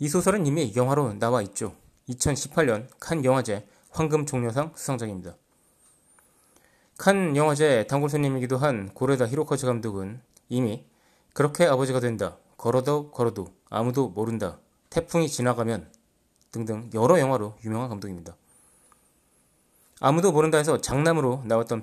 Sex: male